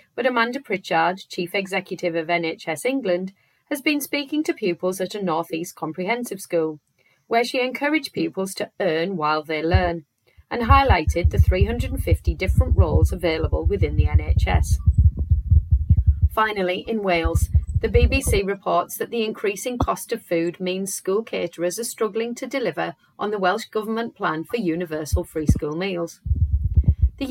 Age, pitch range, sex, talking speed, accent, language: 30-49, 155-205 Hz, female, 145 wpm, British, English